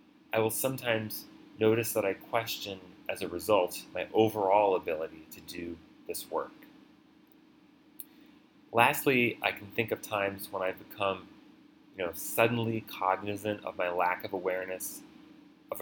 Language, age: English, 30-49